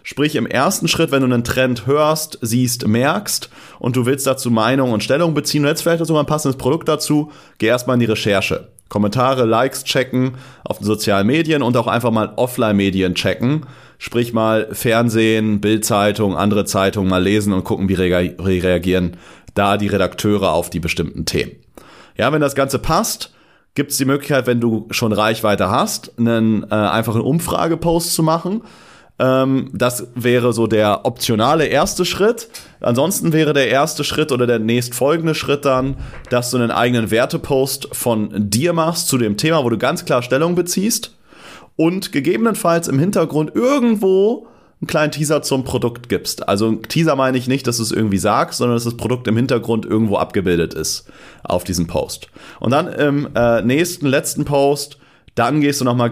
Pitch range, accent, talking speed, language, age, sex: 110-145 Hz, German, 175 wpm, German, 30-49, male